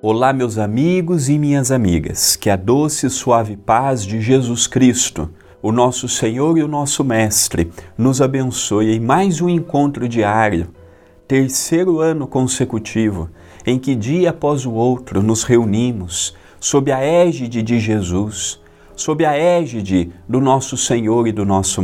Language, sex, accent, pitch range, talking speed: Portuguese, male, Brazilian, 95-135 Hz, 150 wpm